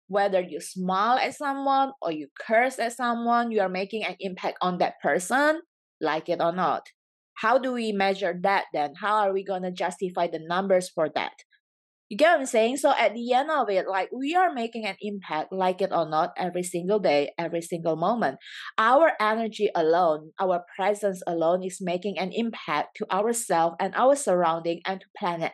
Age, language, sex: 20-39, English, female